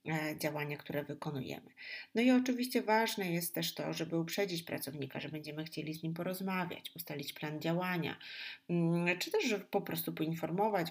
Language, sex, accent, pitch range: Polish, female, native, 155-200 Hz